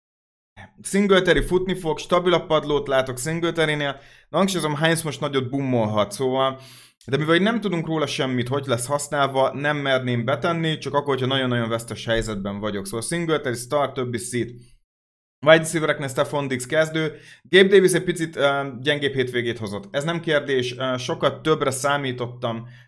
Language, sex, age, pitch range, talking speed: Hungarian, male, 30-49, 125-160 Hz, 145 wpm